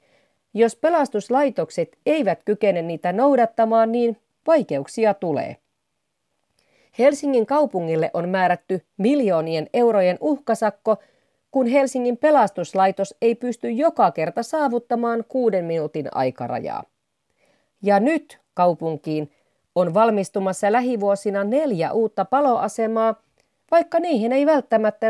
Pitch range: 180-245 Hz